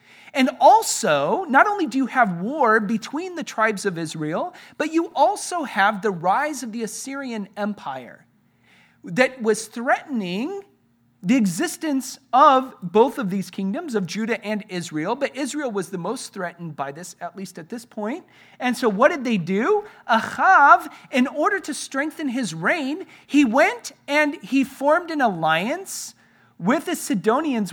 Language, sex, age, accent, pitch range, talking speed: English, male, 40-59, American, 175-270 Hz, 160 wpm